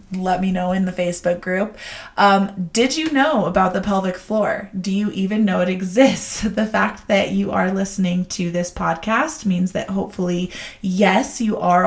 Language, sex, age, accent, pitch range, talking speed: English, female, 20-39, American, 180-210 Hz, 180 wpm